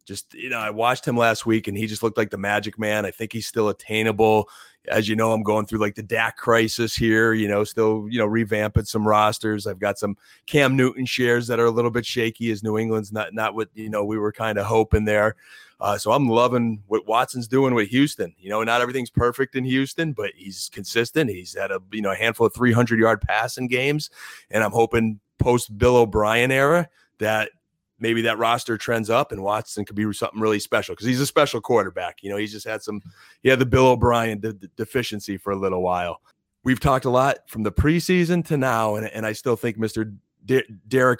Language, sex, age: English, male, 30-49